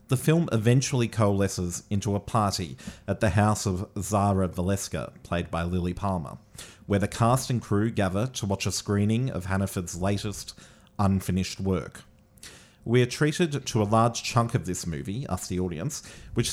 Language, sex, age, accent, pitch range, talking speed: English, male, 40-59, Australian, 95-115 Hz, 165 wpm